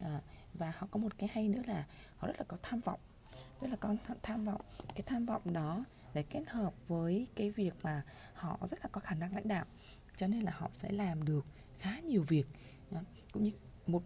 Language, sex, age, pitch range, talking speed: Vietnamese, female, 20-39, 150-220 Hz, 225 wpm